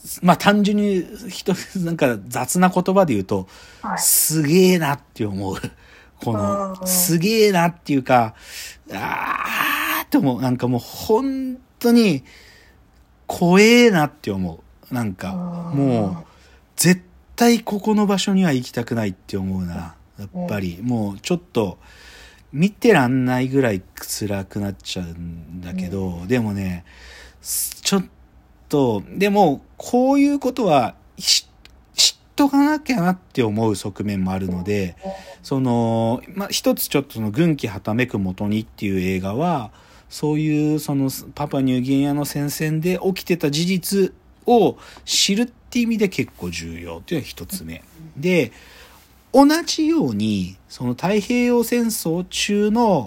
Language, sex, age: Japanese, male, 40-59